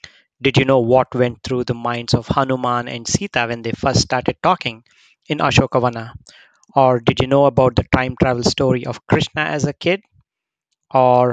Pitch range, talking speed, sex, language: 125-140 Hz, 180 wpm, male, English